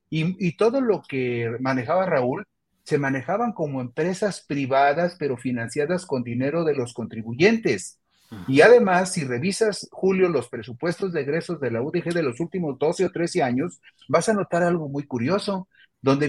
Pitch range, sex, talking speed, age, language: 140-190 Hz, male, 165 wpm, 40-59, Spanish